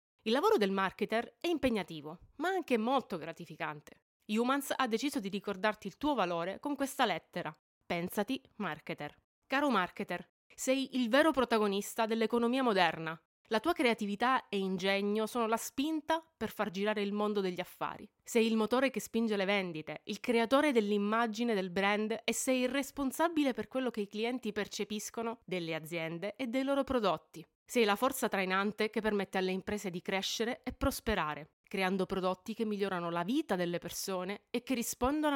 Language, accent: Italian, native